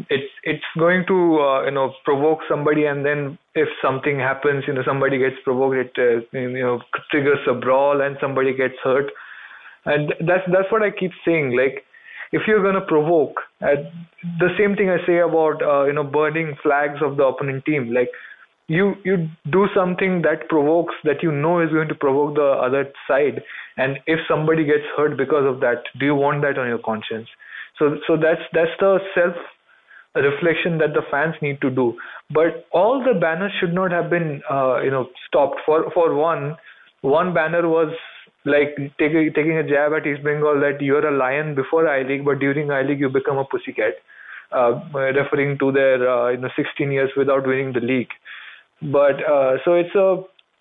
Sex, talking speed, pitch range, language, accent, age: male, 195 wpm, 140-175 Hz, English, Indian, 20-39